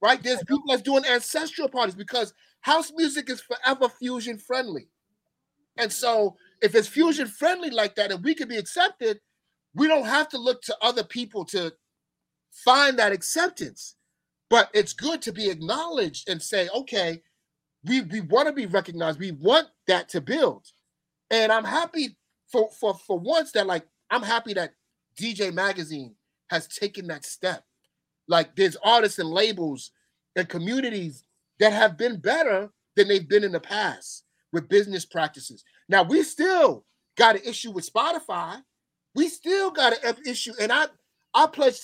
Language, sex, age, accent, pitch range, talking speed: English, male, 30-49, American, 185-260 Hz, 165 wpm